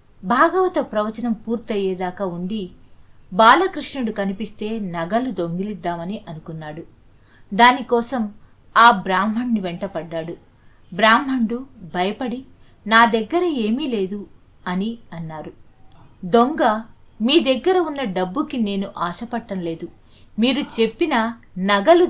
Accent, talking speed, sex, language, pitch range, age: native, 85 wpm, female, Telugu, 180-240 Hz, 50-69